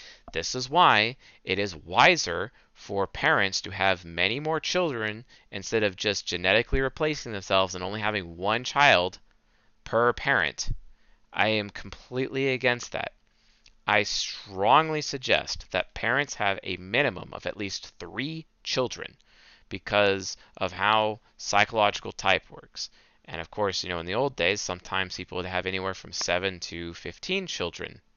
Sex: male